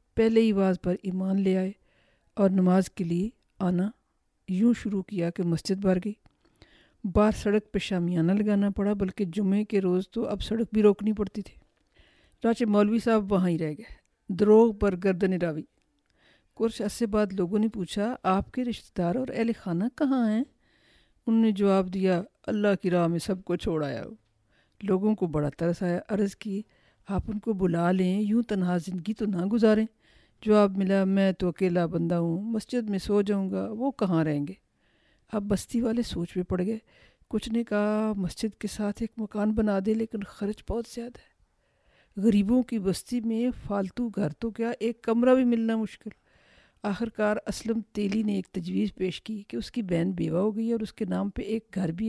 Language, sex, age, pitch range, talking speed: Urdu, female, 50-69, 185-220 Hz, 190 wpm